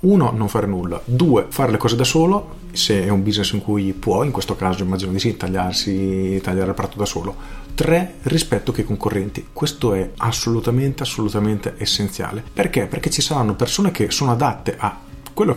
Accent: native